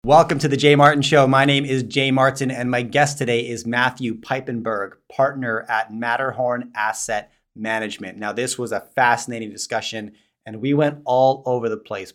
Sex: male